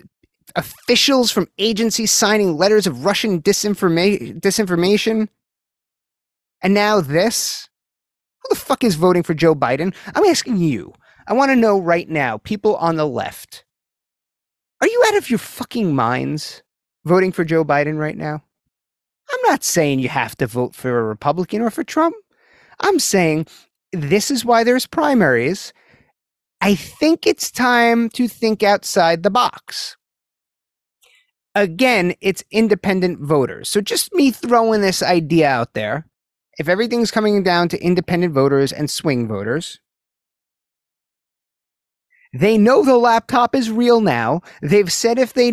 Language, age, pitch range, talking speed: English, 30-49, 165-235 Hz, 140 wpm